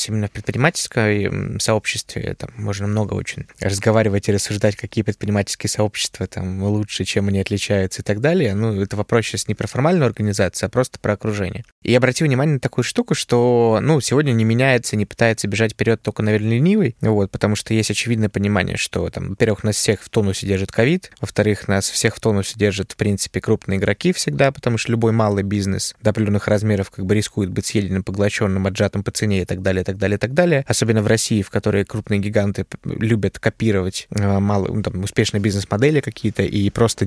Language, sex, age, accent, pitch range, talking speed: Russian, male, 20-39, native, 105-130 Hz, 195 wpm